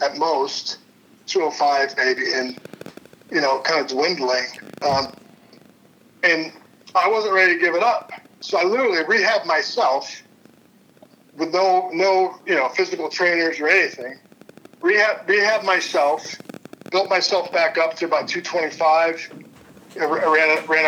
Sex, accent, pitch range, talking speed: male, American, 150-195 Hz, 135 wpm